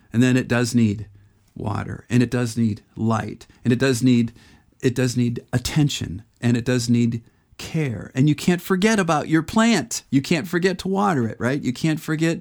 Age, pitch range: 40-59, 115-150 Hz